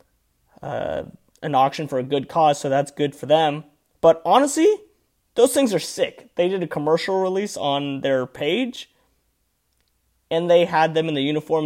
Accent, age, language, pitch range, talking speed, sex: American, 20-39, English, 140-180 Hz, 170 wpm, male